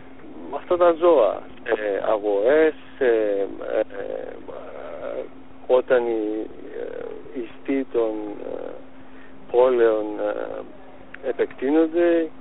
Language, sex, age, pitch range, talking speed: Greek, male, 50-69, 110-180 Hz, 85 wpm